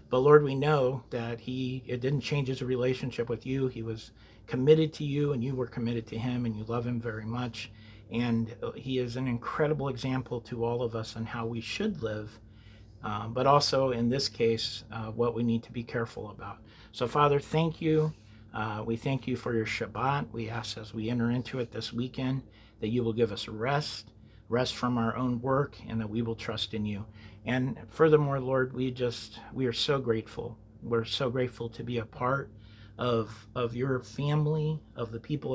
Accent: American